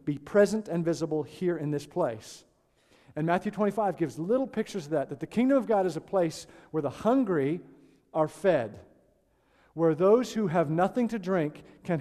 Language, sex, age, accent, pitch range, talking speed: English, male, 50-69, American, 150-210 Hz, 185 wpm